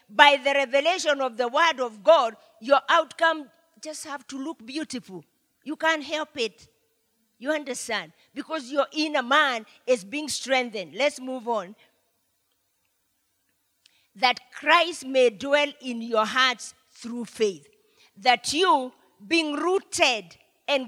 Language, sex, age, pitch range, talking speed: English, female, 40-59, 245-315 Hz, 130 wpm